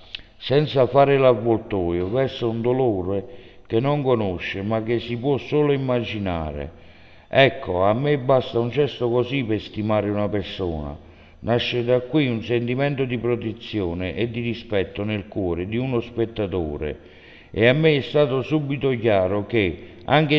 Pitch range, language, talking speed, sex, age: 105-125 Hz, Italian, 145 wpm, male, 60-79